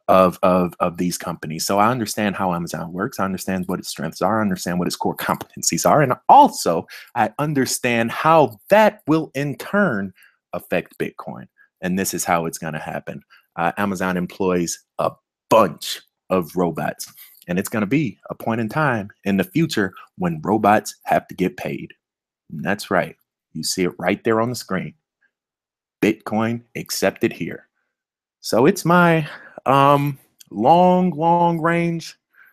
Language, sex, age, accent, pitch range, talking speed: English, male, 30-49, American, 95-145 Hz, 160 wpm